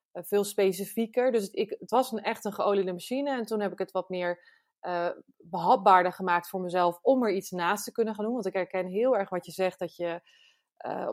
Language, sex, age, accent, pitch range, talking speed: Dutch, female, 20-39, Dutch, 180-220 Hz, 225 wpm